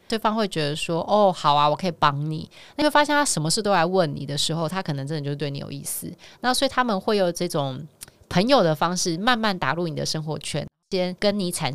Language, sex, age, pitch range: Chinese, female, 20-39, 155-200 Hz